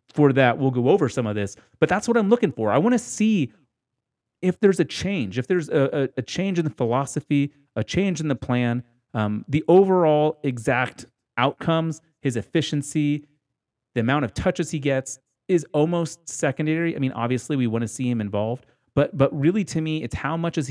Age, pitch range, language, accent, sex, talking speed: 30-49, 120-155 Hz, English, American, male, 205 wpm